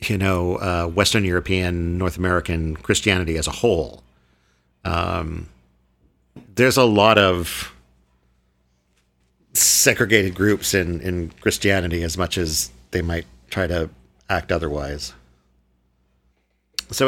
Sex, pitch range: male, 80-110 Hz